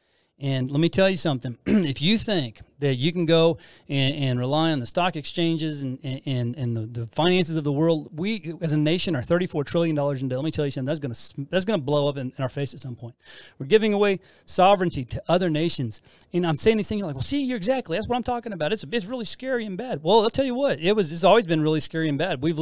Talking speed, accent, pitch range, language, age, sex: 275 wpm, American, 135-180 Hz, English, 30-49, male